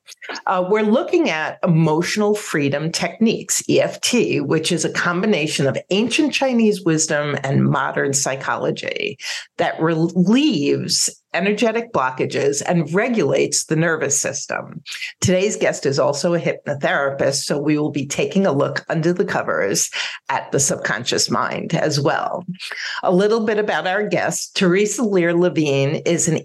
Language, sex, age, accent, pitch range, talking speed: English, female, 50-69, American, 155-210 Hz, 140 wpm